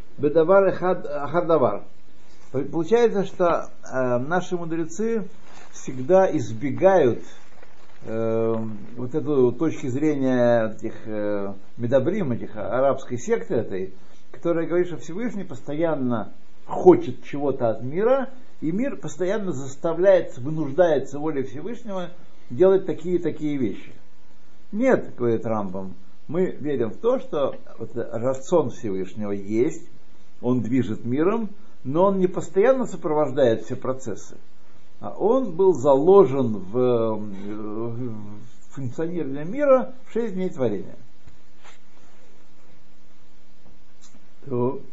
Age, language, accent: 60-79, Russian, native